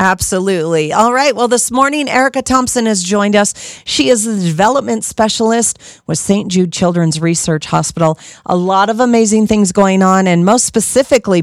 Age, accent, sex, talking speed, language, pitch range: 40-59, American, female, 170 wpm, English, 165-220 Hz